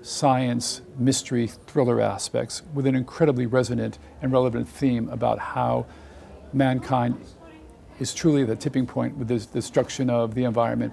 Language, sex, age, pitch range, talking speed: English, male, 50-69, 115-135 Hz, 135 wpm